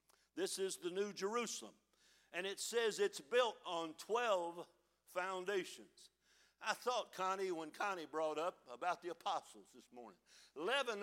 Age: 60-79